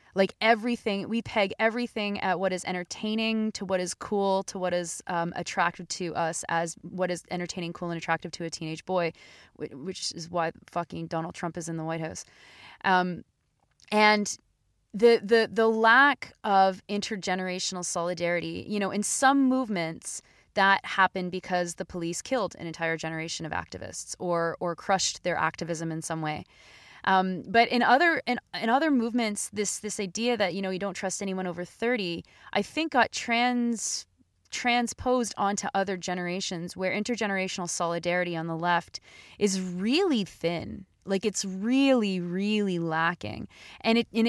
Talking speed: 160 wpm